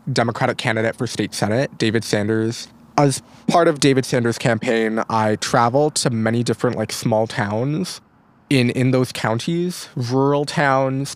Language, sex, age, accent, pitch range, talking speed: English, male, 20-39, American, 115-145 Hz, 145 wpm